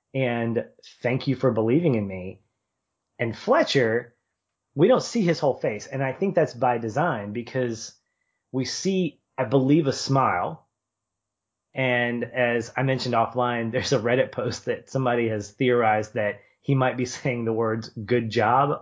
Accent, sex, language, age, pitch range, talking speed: American, male, English, 30-49, 105-130 Hz, 160 wpm